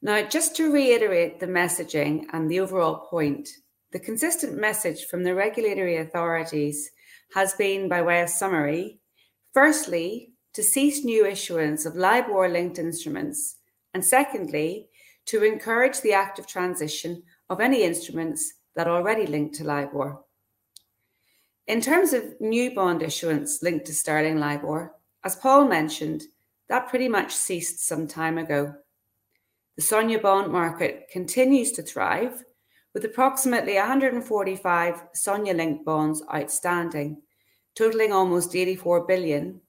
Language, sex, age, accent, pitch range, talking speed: English, female, 30-49, British, 160-230 Hz, 130 wpm